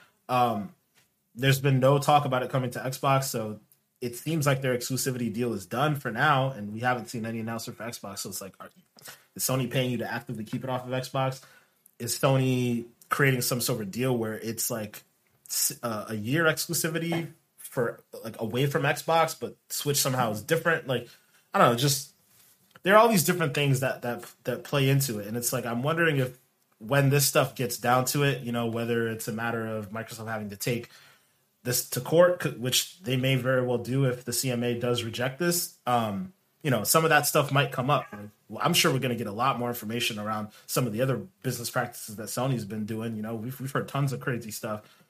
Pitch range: 115-140 Hz